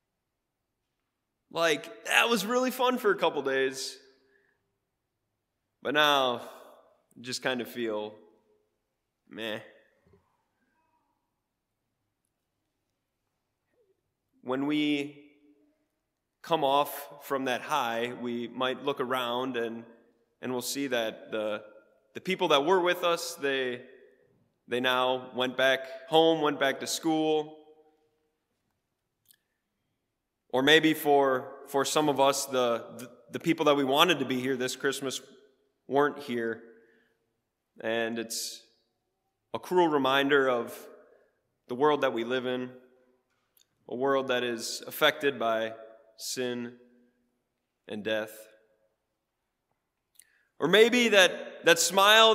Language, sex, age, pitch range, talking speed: English, male, 20-39, 120-175 Hz, 110 wpm